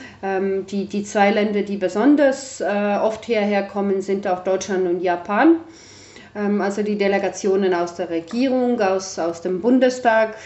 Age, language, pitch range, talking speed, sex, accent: 30-49, German, 180-205 Hz, 150 wpm, female, German